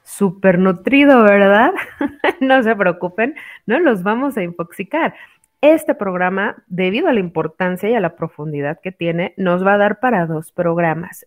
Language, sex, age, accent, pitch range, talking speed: Spanish, female, 30-49, Mexican, 180-235 Hz, 160 wpm